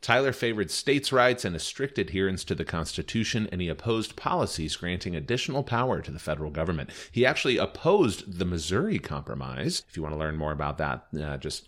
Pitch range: 80-105 Hz